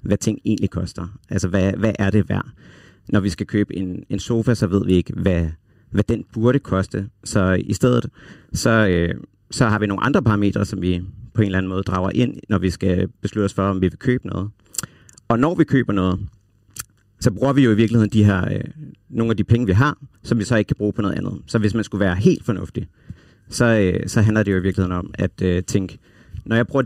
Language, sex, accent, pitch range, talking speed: Danish, male, native, 95-120 Hz, 230 wpm